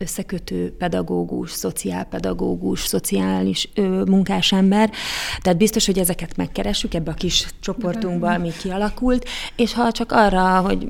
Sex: female